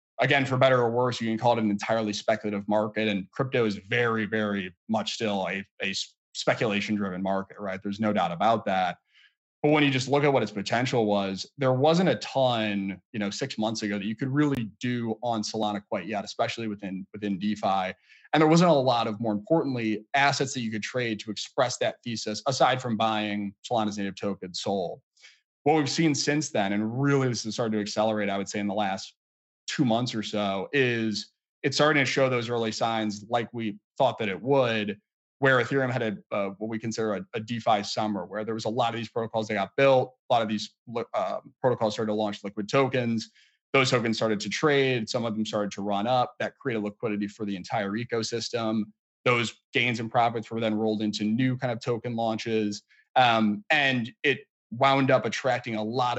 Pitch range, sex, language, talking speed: 105-125 Hz, male, English, 210 wpm